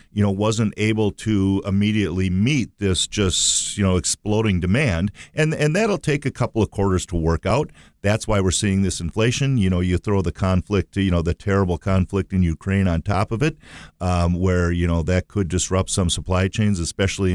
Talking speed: 200 wpm